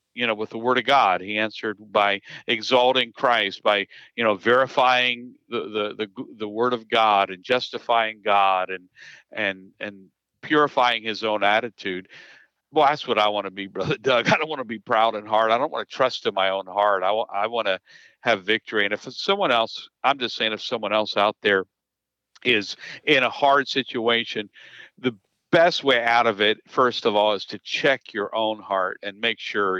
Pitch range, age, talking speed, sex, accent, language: 100-125 Hz, 50-69, 200 wpm, male, American, English